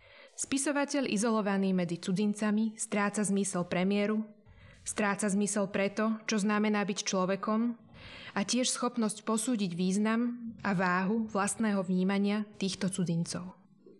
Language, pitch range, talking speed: Slovak, 195-235 Hz, 105 wpm